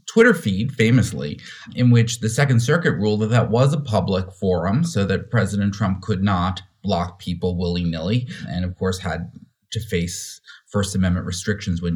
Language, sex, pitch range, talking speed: English, male, 100-135 Hz, 170 wpm